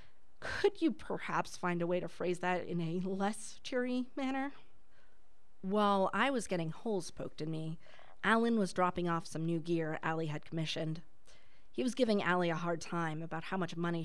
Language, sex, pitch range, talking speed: English, female, 160-190 Hz, 185 wpm